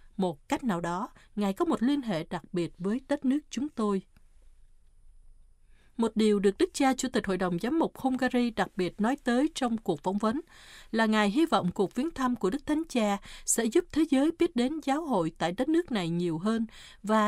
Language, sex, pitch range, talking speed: Vietnamese, female, 195-275 Hz, 215 wpm